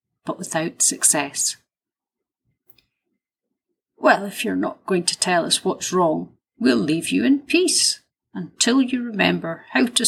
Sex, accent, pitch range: female, British, 160-240 Hz